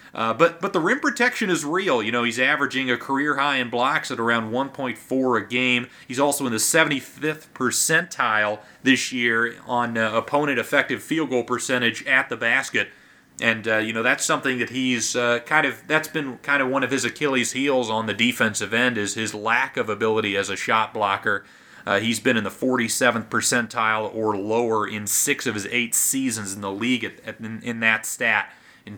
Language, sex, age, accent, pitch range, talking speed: English, male, 30-49, American, 110-130 Hz, 205 wpm